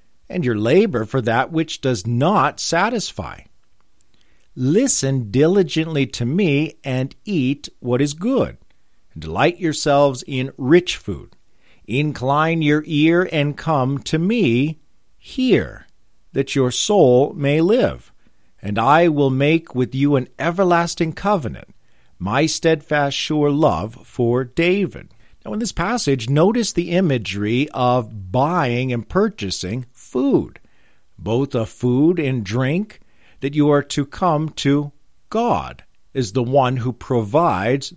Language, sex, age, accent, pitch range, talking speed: English, male, 50-69, American, 130-175 Hz, 125 wpm